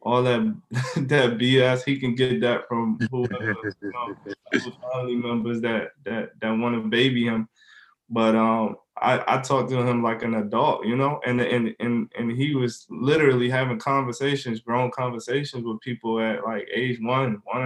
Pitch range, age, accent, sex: 115-130 Hz, 20-39, American, male